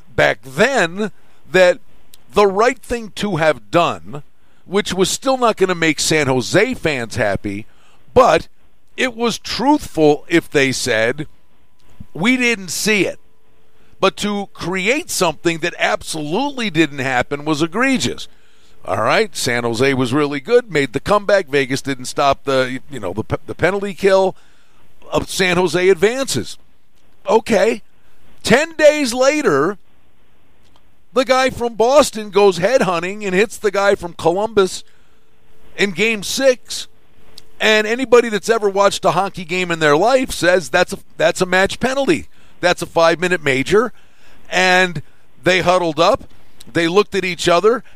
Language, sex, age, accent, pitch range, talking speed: English, male, 50-69, American, 160-220 Hz, 145 wpm